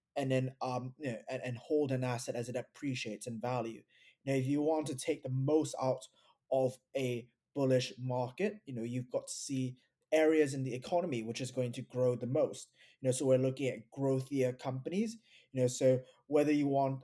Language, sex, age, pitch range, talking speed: English, male, 20-39, 125-140 Hz, 210 wpm